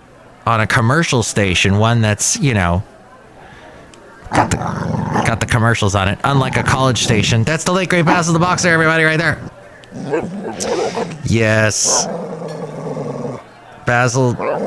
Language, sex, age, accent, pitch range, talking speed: English, male, 30-49, American, 95-125 Hz, 125 wpm